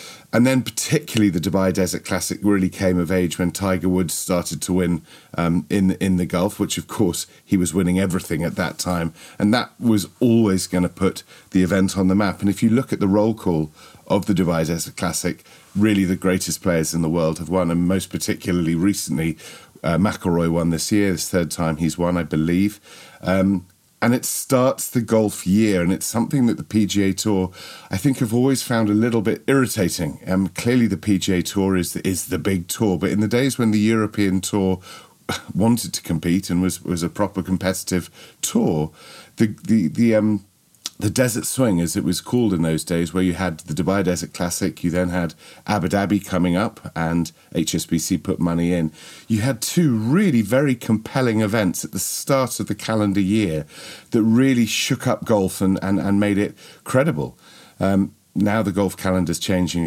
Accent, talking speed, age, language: British, 200 wpm, 40-59, English